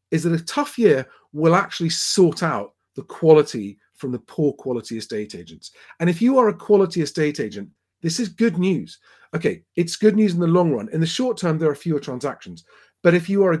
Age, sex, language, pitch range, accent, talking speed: 40-59, male, English, 140-200 Hz, British, 220 wpm